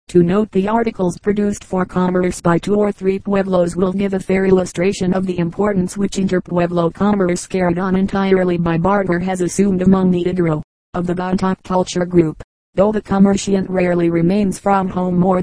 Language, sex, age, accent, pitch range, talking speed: English, female, 40-59, American, 180-195 Hz, 180 wpm